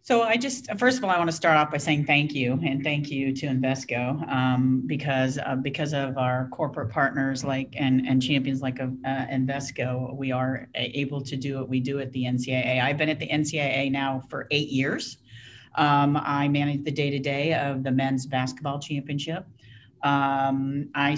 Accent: American